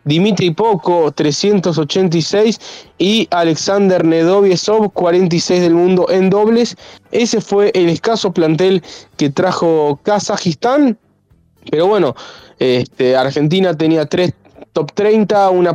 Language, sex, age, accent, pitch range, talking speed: Spanish, male, 20-39, Argentinian, 160-200 Hz, 105 wpm